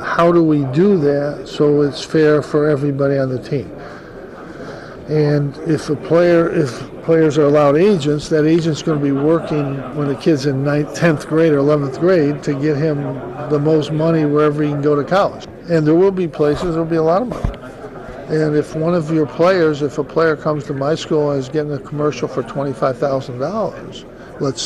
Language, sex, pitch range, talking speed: English, male, 140-160 Hz, 200 wpm